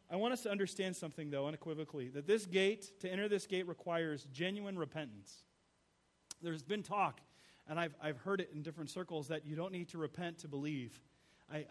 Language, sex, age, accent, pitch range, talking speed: English, male, 40-59, American, 140-180 Hz, 195 wpm